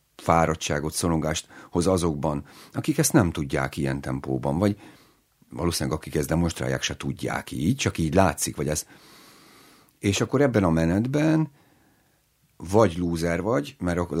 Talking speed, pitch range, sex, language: 135 wpm, 75-105 Hz, male, Hungarian